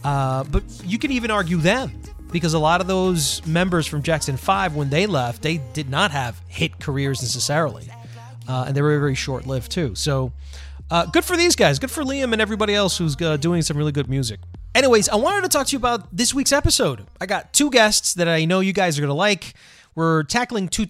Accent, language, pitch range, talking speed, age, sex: American, English, 135-185 Hz, 225 wpm, 30-49, male